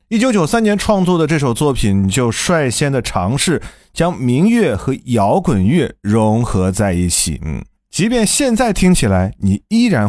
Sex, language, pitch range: male, Chinese, 105-170 Hz